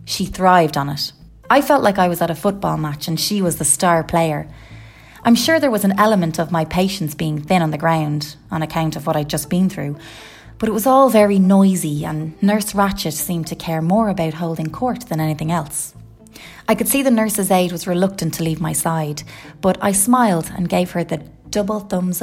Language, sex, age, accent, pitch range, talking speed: English, female, 20-39, Irish, 160-200 Hz, 220 wpm